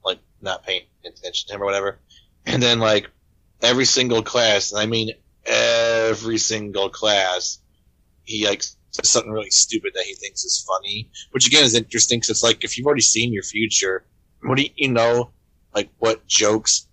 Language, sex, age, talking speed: English, male, 30-49, 180 wpm